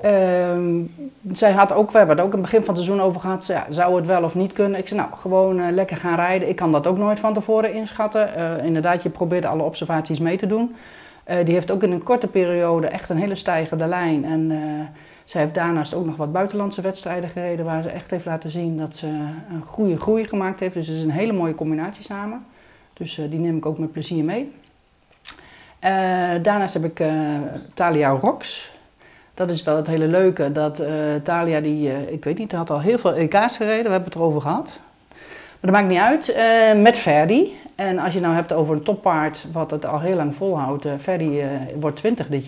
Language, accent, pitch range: Dutch, Dutch, 160-195 Hz